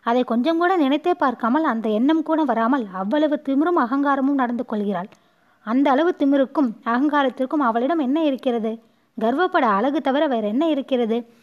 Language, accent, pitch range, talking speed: Tamil, native, 230-300 Hz, 140 wpm